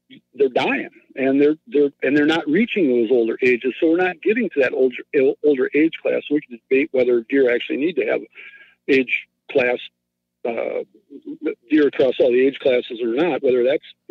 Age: 60-79